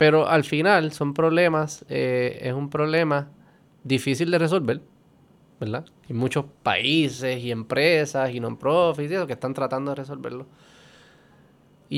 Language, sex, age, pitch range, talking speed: Spanish, male, 20-39, 125-150 Hz, 140 wpm